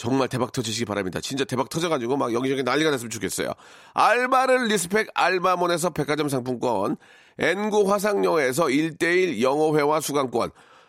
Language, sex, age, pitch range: Korean, male, 40-59, 155-215 Hz